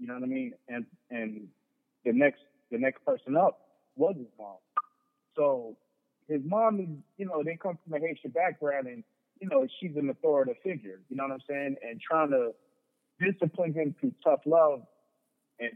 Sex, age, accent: male, 30-49, American